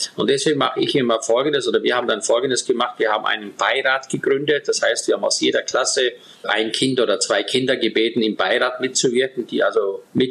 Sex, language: male, German